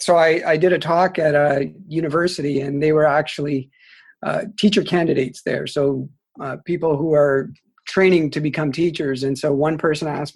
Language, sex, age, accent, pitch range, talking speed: English, male, 50-69, American, 145-175 Hz, 180 wpm